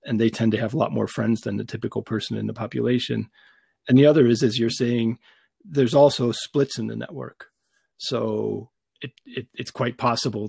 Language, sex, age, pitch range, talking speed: English, male, 40-59, 105-125 Hz, 200 wpm